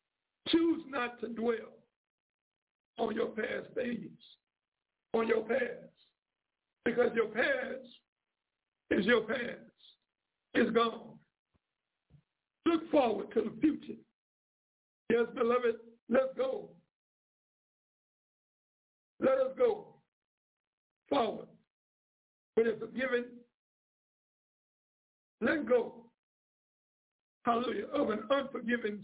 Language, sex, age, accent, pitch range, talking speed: English, male, 60-79, American, 230-270 Hz, 85 wpm